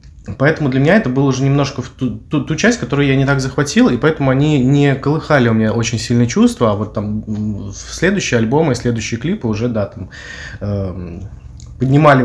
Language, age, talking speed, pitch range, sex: Russian, 20-39, 200 wpm, 110-135 Hz, male